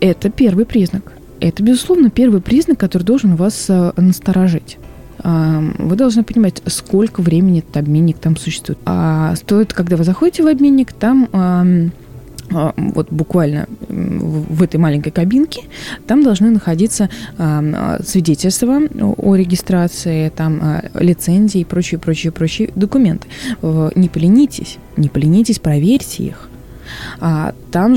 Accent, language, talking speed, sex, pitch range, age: native, Russian, 115 wpm, female, 160-215 Hz, 20-39